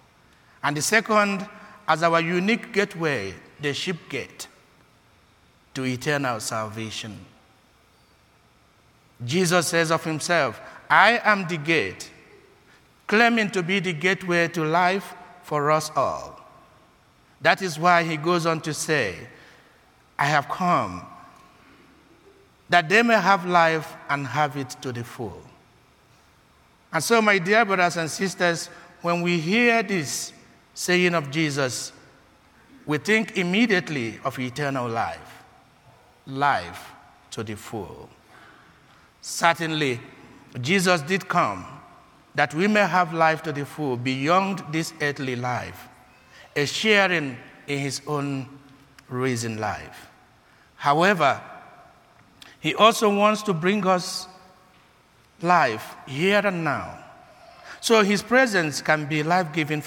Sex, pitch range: male, 140-185 Hz